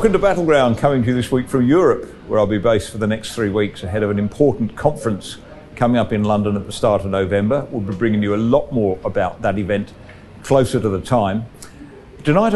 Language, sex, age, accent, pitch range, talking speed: English, male, 50-69, British, 100-125 Hz, 230 wpm